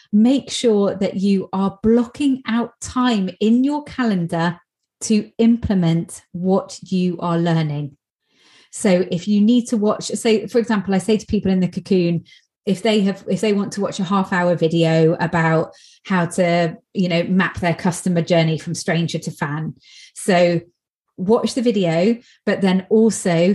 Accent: British